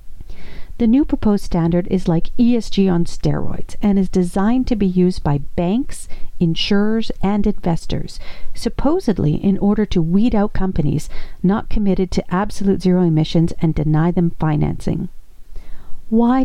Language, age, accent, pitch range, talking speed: English, 50-69, American, 175-220 Hz, 140 wpm